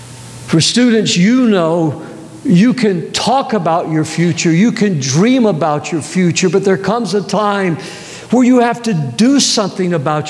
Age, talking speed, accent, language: 60-79, 165 wpm, American, English